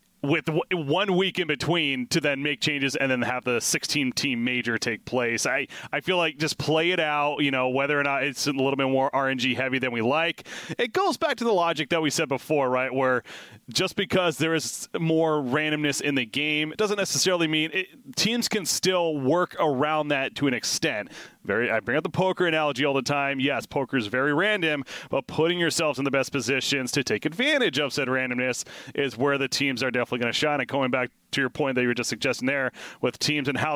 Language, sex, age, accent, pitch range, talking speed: English, male, 30-49, American, 130-160 Hz, 230 wpm